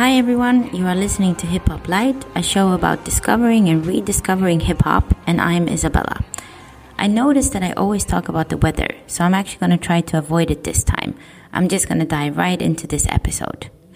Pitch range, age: 155-185 Hz, 20-39